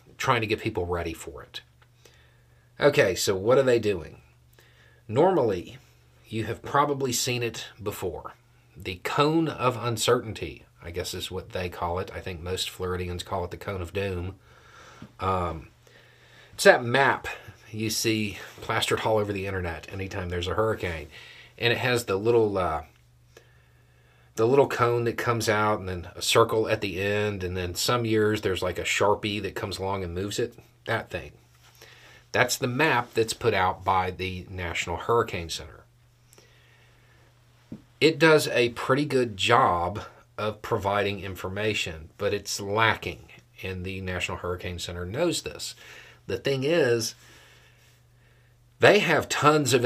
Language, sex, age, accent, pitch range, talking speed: English, male, 40-59, American, 90-120 Hz, 155 wpm